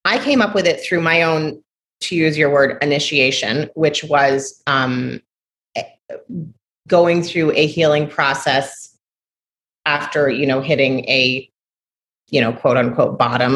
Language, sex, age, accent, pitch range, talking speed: English, female, 30-49, American, 140-165 Hz, 135 wpm